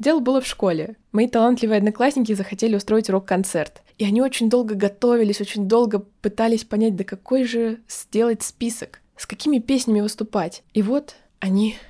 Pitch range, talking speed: 190-230 Hz, 155 wpm